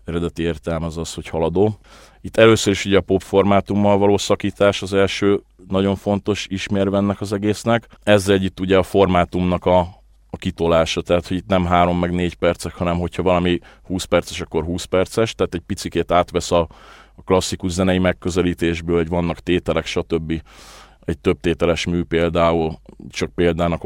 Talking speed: 165 wpm